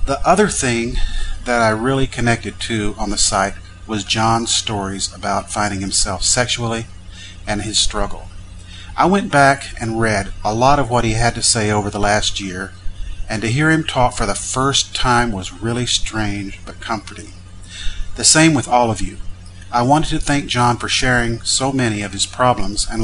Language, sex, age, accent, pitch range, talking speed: English, male, 40-59, American, 95-120 Hz, 185 wpm